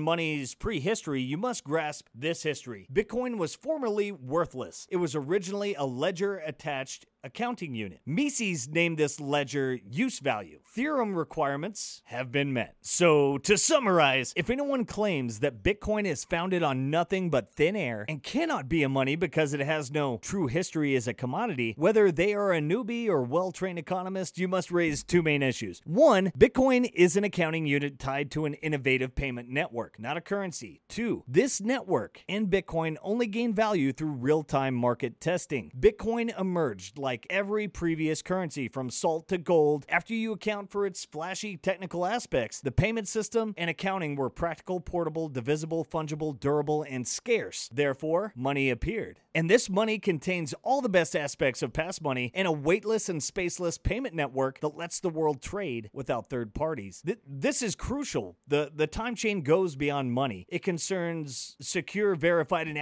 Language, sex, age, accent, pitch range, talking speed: English, male, 30-49, American, 140-195 Hz, 170 wpm